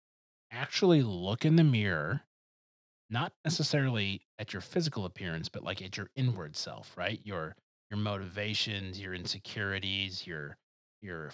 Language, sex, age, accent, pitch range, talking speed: English, male, 30-49, American, 90-115 Hz, 130 wpm